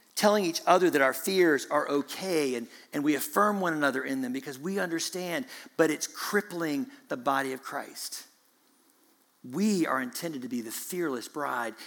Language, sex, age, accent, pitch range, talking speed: English, male, 50-69, American, 145-215 Hz, 170 wpm